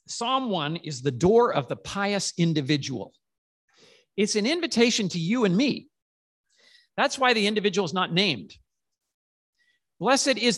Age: 50-69